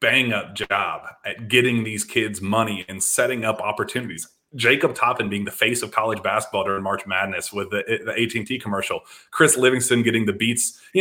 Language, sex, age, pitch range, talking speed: English, male, 30-49, 105-160 Hz, 190 wpm